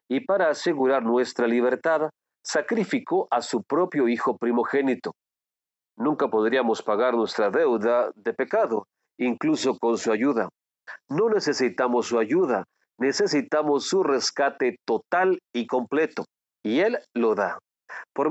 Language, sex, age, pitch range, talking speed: Spanish, male, 40-59, 120-155 Hz, 120 wpm